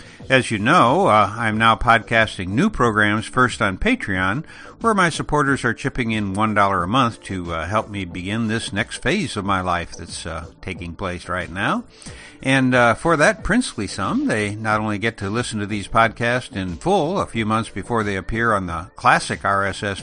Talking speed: 195 wpm